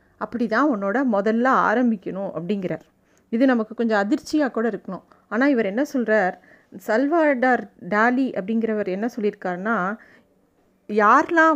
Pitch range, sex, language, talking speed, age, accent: 210-270 Hz, female, Tamil, 115 wpm, 30-49, native